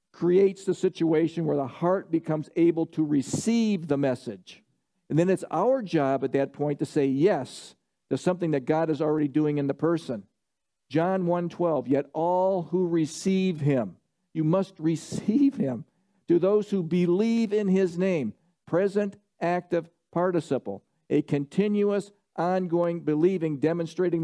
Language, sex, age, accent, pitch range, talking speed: English, male, 50-69, American, 150-190 Hz, 145 wpm